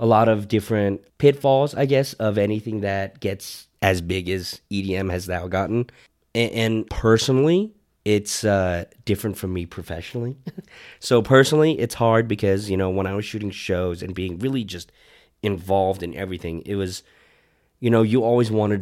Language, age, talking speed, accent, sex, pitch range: English, 30-49, 165 wpm, American, male, 95-115 Hz